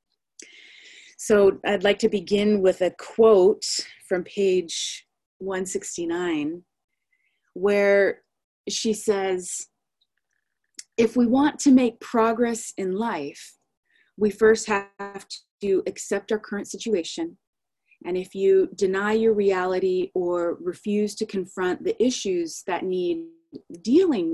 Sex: female